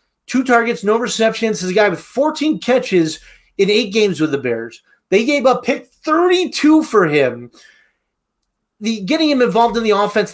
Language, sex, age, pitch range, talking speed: English, male, 30-49, 175-220 Hz, 180 wpm